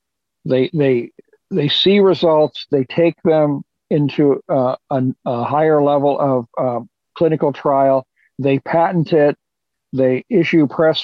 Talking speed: 130 wpm